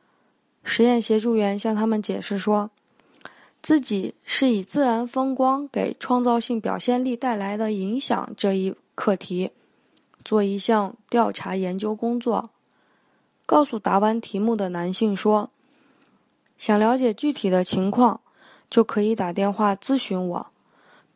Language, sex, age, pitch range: Chinese, female, 20-39, 195-245 Hz